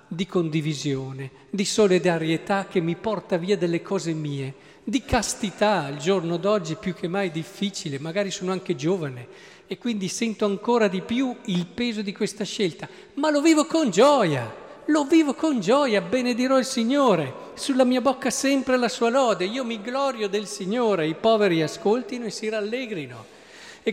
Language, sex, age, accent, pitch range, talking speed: Italian, male, 50-69, native, 175-235 Hz, 170 wpm